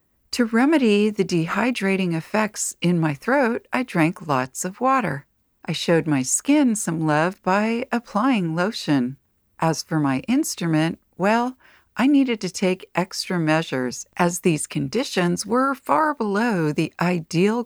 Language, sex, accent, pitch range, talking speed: English, female, American, 155-245 Hz, 140 wpm